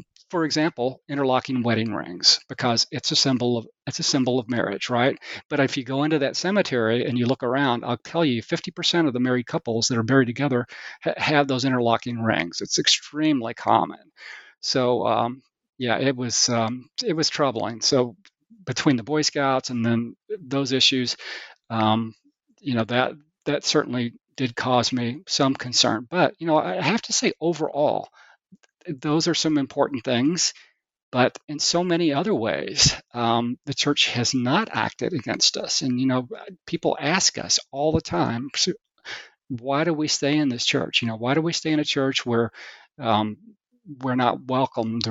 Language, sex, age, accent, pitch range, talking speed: English, male, 40-59, American, 120-155 Hz, 175 wpm